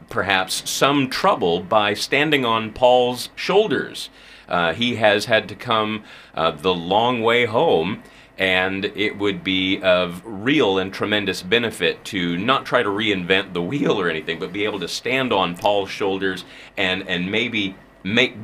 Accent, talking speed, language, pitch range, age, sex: American, 160 wpm, English, 95-125 Hz, 30-49, male